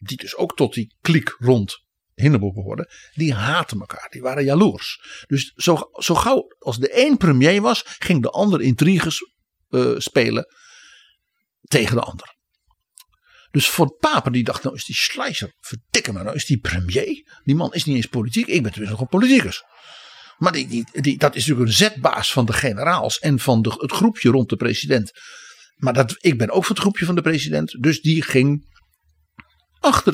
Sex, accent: male, Dutch